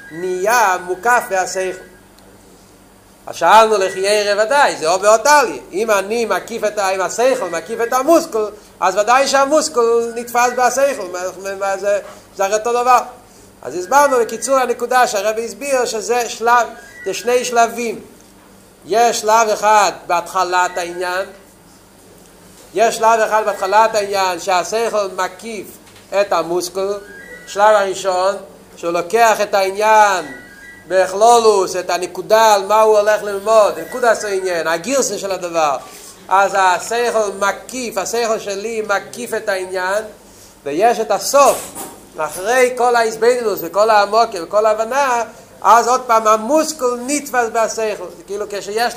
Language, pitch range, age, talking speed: Hebrew, 190-235 Hz, 40-59, 120 wpm